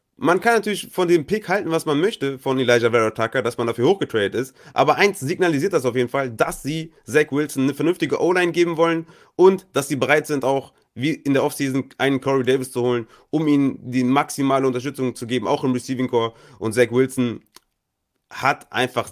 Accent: German